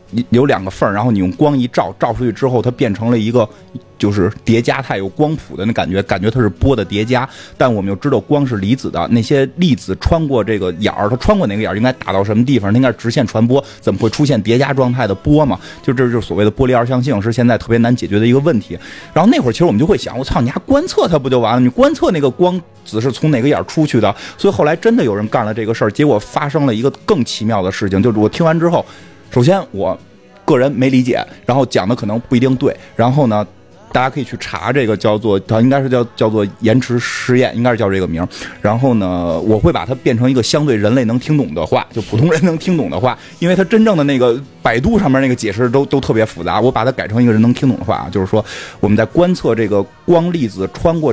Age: 30-49